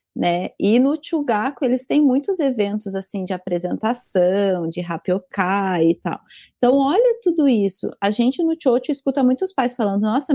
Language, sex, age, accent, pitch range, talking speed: Portuguese, female, 30-49, Brazilian, 205-275 Hz, 160 wpm